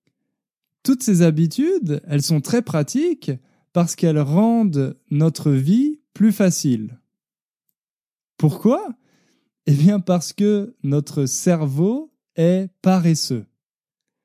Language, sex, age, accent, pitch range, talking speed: French, male, 20-39, French, 150-205 Hz, 95 wpm